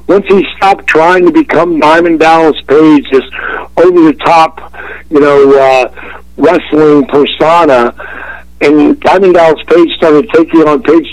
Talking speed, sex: 130 wpm, male